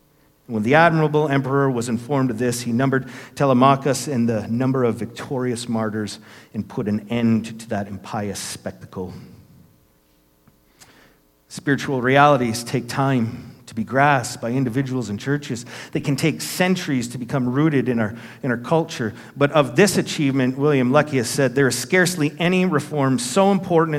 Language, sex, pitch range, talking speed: English, male, 115-140 Hz, 160 wpm